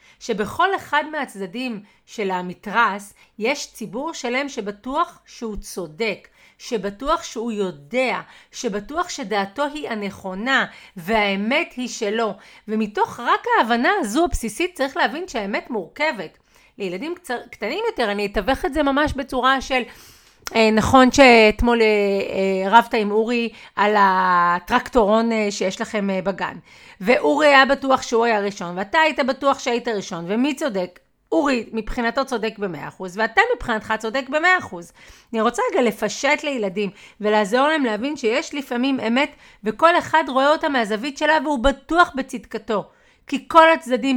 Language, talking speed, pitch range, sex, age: Hebrew, 130 wpm, 205-275 Hz, female, 40-59